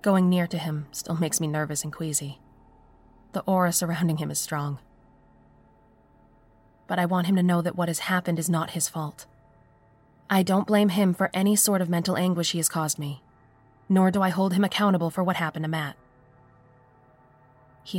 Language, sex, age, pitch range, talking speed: English, female, 20-39, 125-180 Hz, 185 wpm